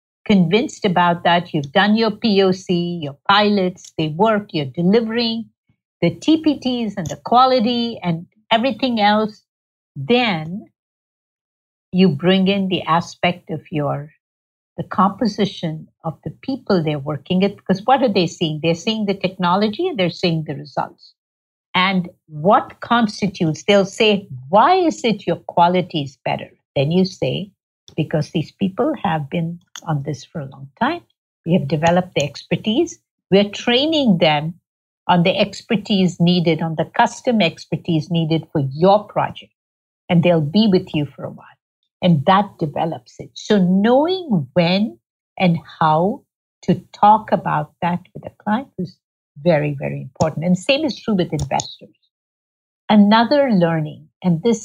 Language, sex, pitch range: English, female, 160-210 Hz